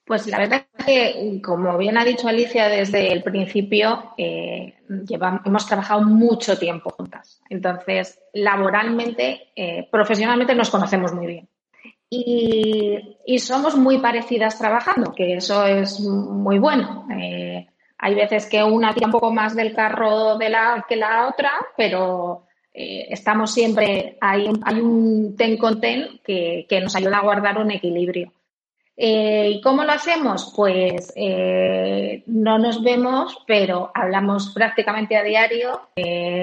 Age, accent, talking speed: 20-39, Spanish, 145 wpm